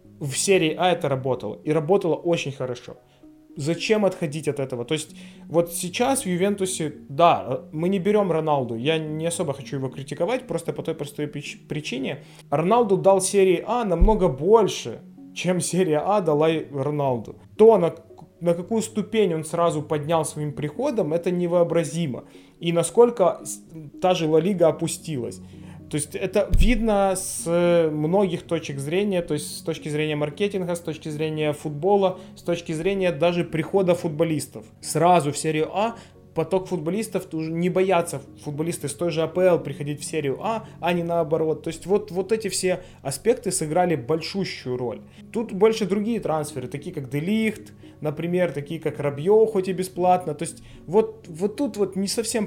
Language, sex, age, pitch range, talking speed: Ukrainian, male, 20-39, 150-185 Hz, 160 wpm